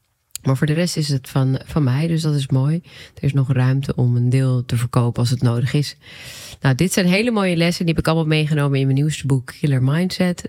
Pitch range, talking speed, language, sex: 130-155 Hz, 245 wpm, Dutch, female